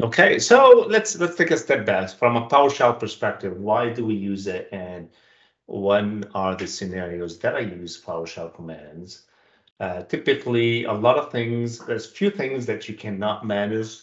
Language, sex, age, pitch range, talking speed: English, male, 40-59, 90-110 Hz, 170 wpm